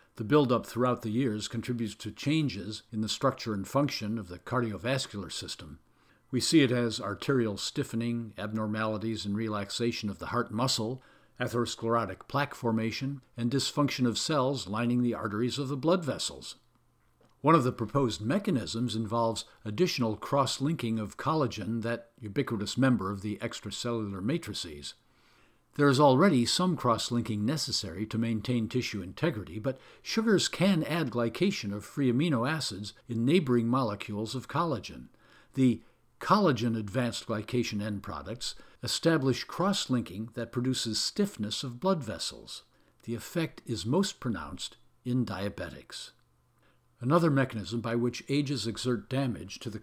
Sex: male